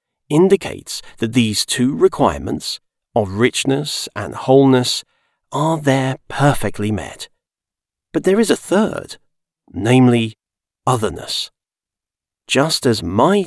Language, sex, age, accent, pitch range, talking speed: English, male, 40-59, British, 105-145 Hz, 105 wpm